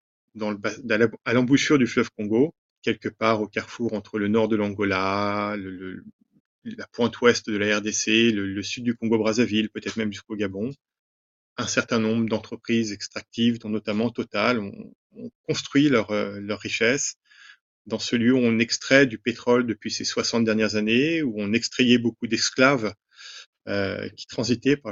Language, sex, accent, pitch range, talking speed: French, male, French, 105-125 Hz, 170 wpm